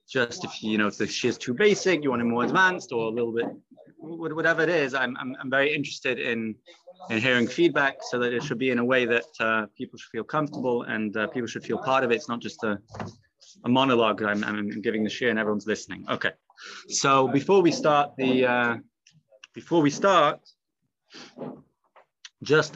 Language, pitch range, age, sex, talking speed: English, 120-160 Hz, 30-49, male, 210 wpm